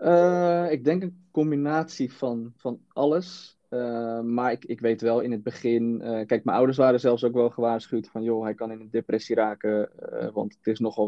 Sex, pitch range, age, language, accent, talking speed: male, 110-135 Hz, 20-39, Dutch, Dutch, 210 wpm